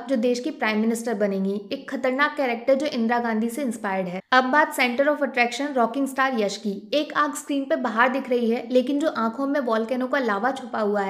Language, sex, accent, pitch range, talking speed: Hindi, female, native, 235-285 Hz, 220 wpm